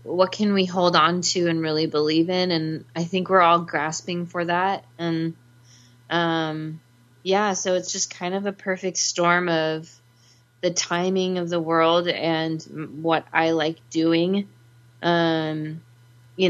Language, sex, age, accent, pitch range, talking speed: English, female, 20-39, American, 150-170 Hz, 155 wpm